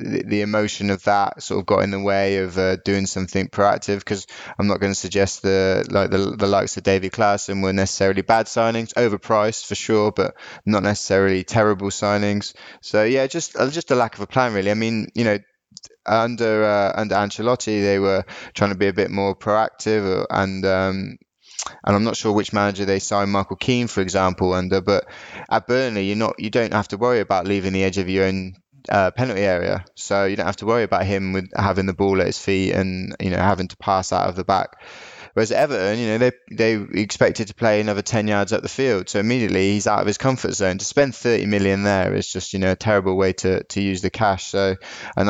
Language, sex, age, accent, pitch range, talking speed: English, male, 20-39, British, 95-110 Hz, 225 wpm